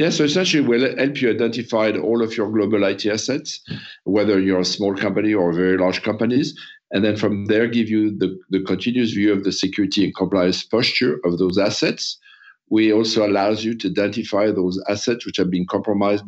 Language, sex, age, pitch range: English, male, 50-69, 90-105 Hz